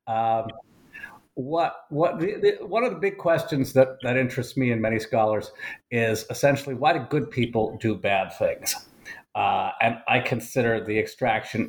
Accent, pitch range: American, 115-155 Hz